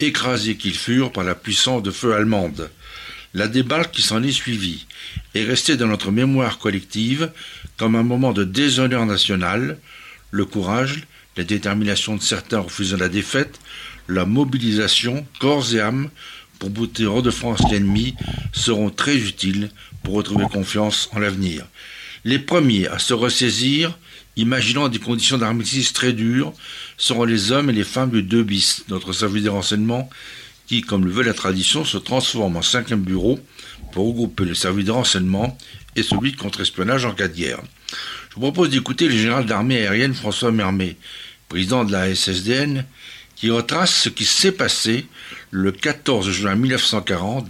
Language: French